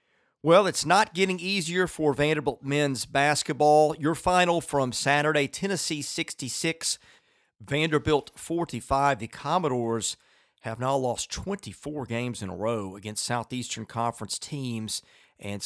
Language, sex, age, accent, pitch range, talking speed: English, male, 40-59, American, 115-150 Hz, 125 wpm